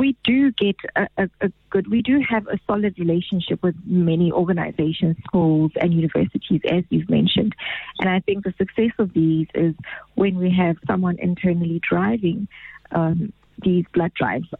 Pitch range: 170-205 Hz